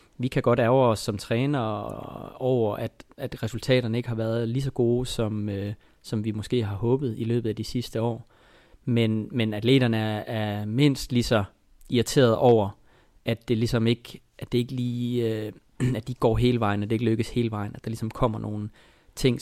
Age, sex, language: 30-49, male, Danish